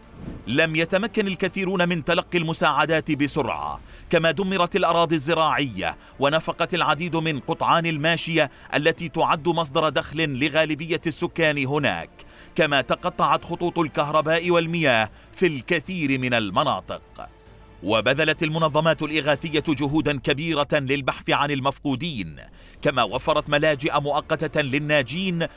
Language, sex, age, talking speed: Arabic, male, 40-59, 105 wpm